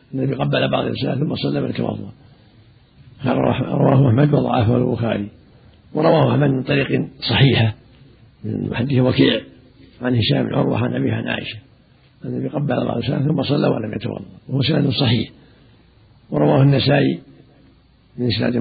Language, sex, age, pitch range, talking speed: Arabic, male, 60-79, 120-145 Hz, 140 wpm